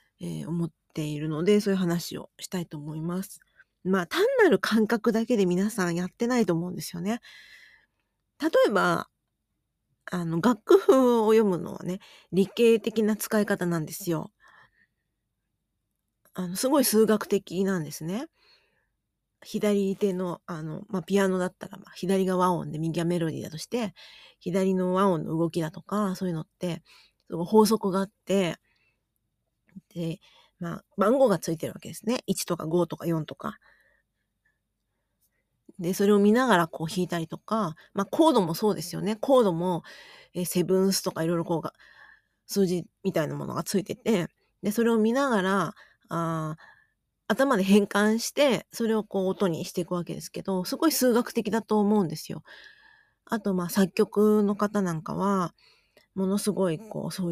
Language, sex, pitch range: Japanese, female, 170-215 Hz